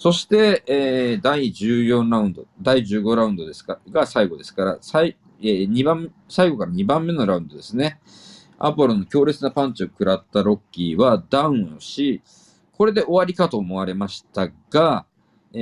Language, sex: Japanese, male